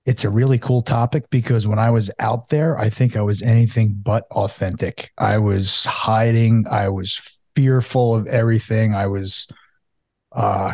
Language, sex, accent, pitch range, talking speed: English, male, American, 105-130 Hz, 160 wpm